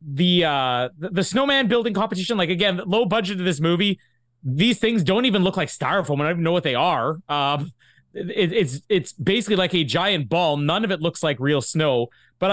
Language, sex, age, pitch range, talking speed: English, male, 30-49, 145-220 Hz, 210 wpm